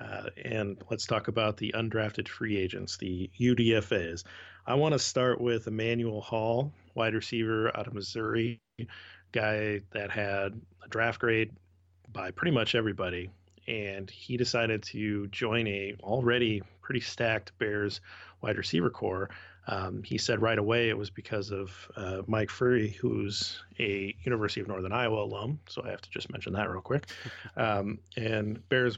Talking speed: 160 wpm